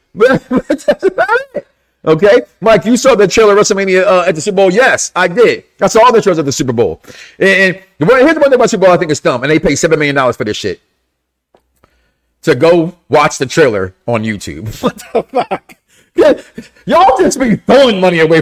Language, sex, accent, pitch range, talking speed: English, male, American, 175-260 Hz, 205 wpm